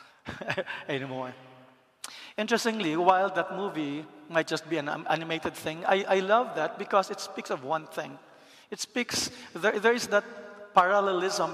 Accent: Filipino